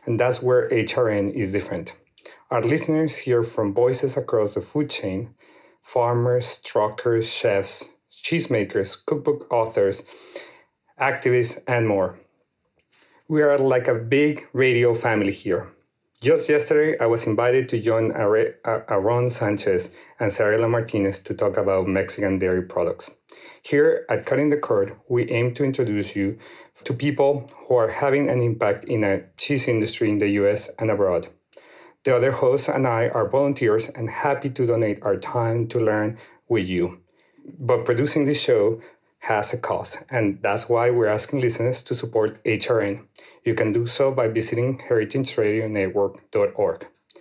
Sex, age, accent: male, 40-59, Mexican